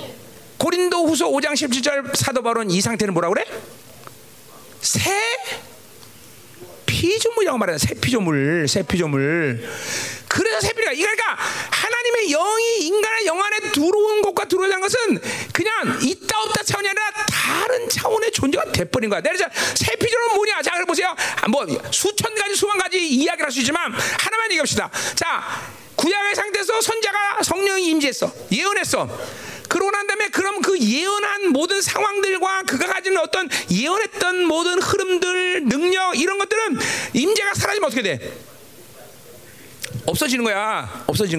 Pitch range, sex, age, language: 250-390 Hz, male, 40-59, Korean